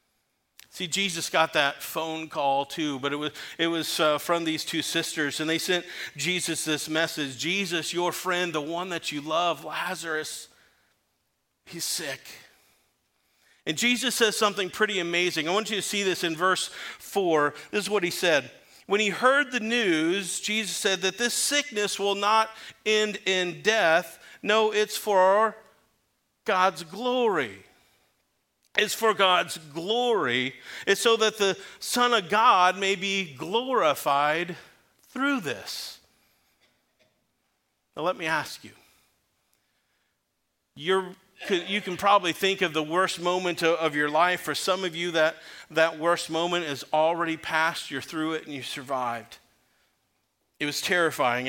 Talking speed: 150 wpm